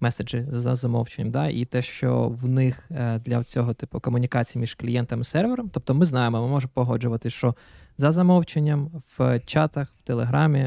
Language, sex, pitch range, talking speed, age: Ukrainian, male, 120-145 Hz, 165 wpm, 20-39